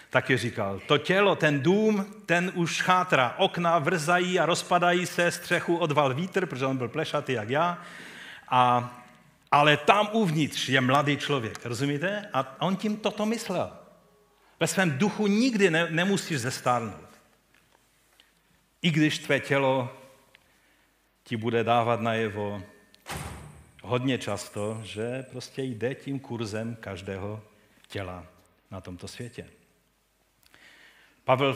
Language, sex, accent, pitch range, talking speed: Czech, male, native, 120-170 Hz, 125 wpm